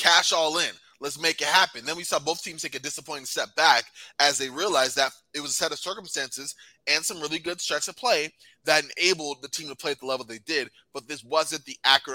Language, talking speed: English, 245 wpm